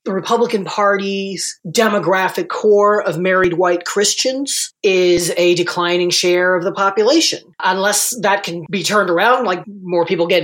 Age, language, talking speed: 40-59, English, 150 wpm